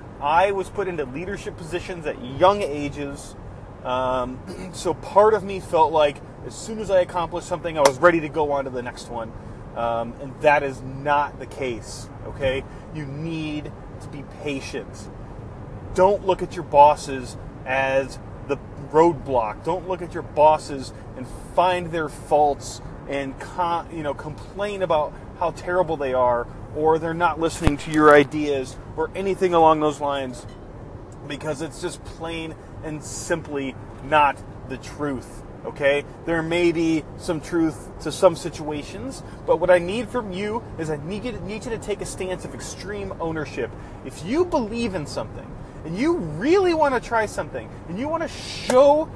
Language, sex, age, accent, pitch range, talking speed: English, male, 30-49, American, 130-180 Hz, 165 wpm